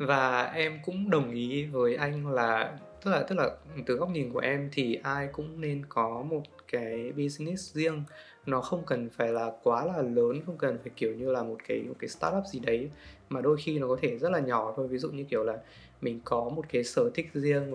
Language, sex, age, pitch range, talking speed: Vietnamese, male, 20-39, 120-150 Hz, 235 wpm